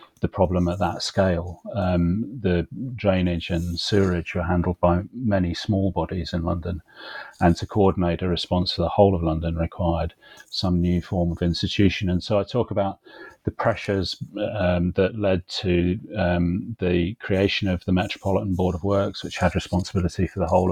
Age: 40-59